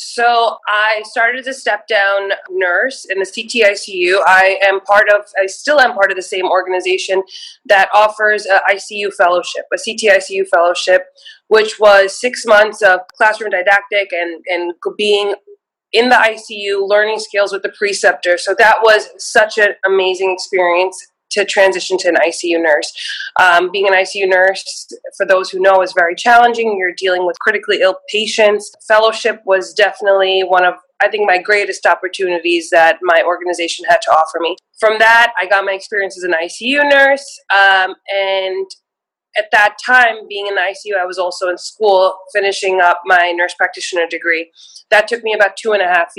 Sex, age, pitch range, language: female, 20-39, 185-215 Hz, English